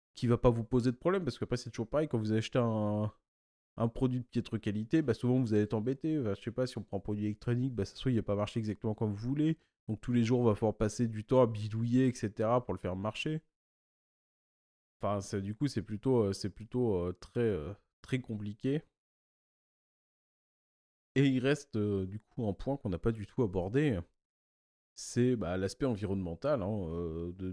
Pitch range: 95-125 Hz